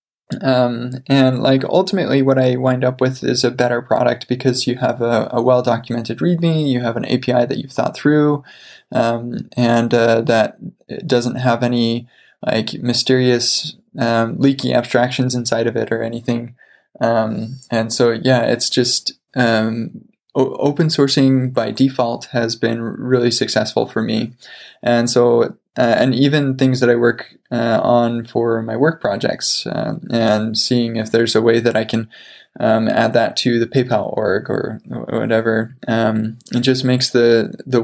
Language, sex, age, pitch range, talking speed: English, male, 20-39, 115-130 Hz, 165 wpm